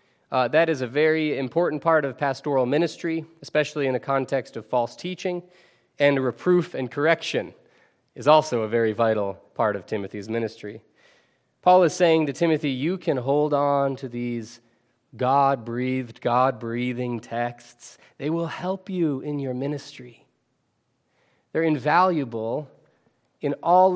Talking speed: 140 wpm